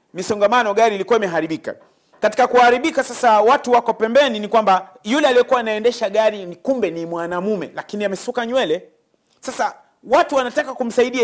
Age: 40-59